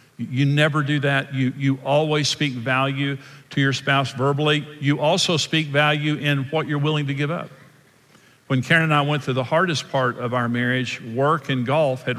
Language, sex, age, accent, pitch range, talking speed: English, male, 50-69, American, 125-145 Hz, 195 wpm